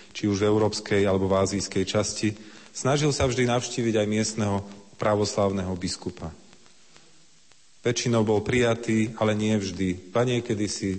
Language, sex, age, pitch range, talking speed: Slovak, male, 40-59, 95-115 Hz, 135 wpm